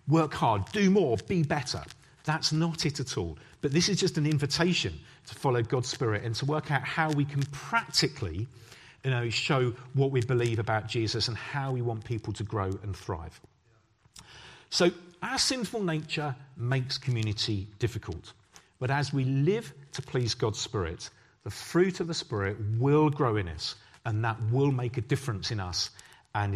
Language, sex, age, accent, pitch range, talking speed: English, male, 40-59, British, 110-155 Hz, 175 wpm